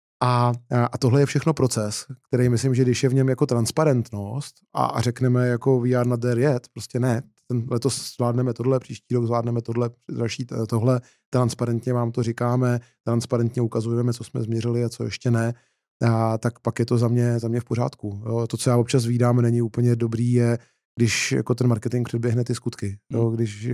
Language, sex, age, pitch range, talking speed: Czech, male, 20-39, 115-125 Hz, 175 wpm